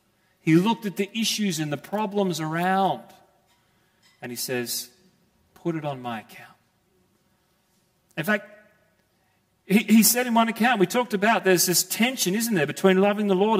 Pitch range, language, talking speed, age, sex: 170-205 Hz, English, 165 wpm, 40-59, male